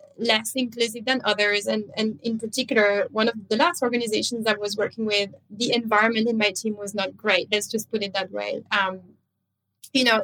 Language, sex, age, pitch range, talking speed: English, female, 20-39, 215-255 Hz, 200 wpm